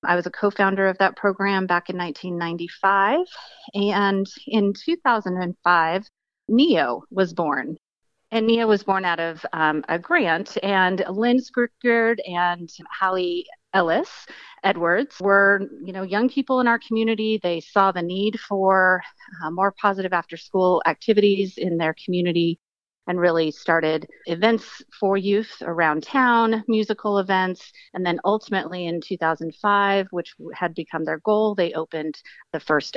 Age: 30-49